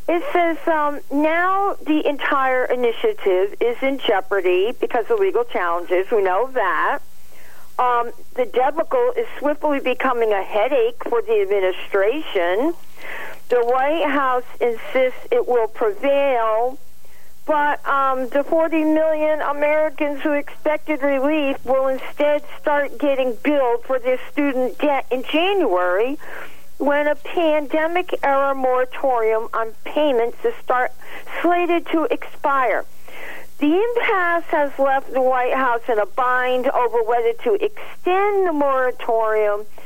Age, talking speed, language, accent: 50-69, 120 wpm, English, American